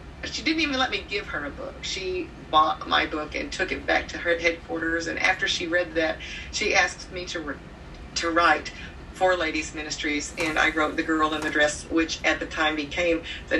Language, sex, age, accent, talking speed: English, female, 40-59, American, 210 wpm